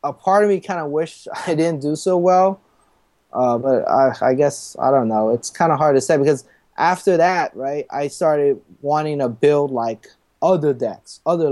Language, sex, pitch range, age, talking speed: English, male, 135-165 Hz, 30-49, 205 wpm